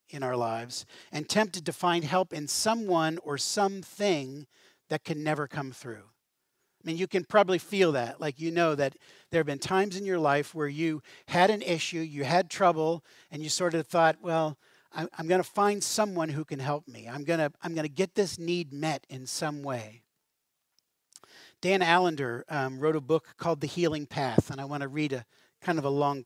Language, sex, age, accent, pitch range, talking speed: English, male, 40-59, American, 135-175 Hz, 210 wpm